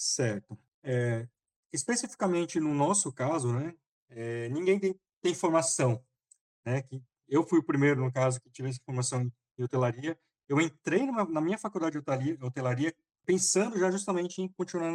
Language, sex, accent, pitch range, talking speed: Portuguese, male, Brazilian, 125-165 Hz, 155 wpm